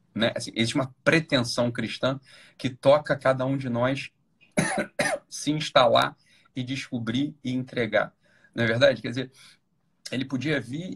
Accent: Brazilian